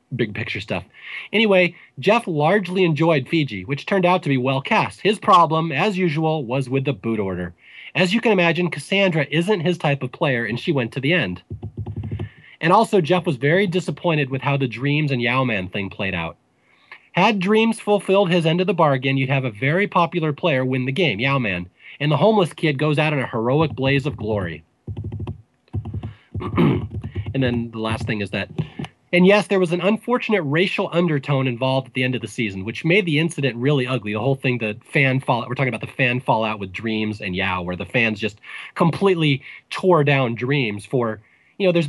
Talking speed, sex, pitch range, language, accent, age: 205 wpm, male, 115-170 Hz, English, American, 30-49